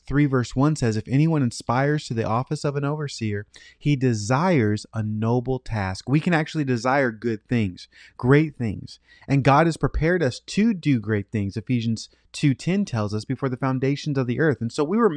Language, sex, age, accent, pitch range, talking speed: English, male, 30-49, American, 115-150 Hz, 195 wpm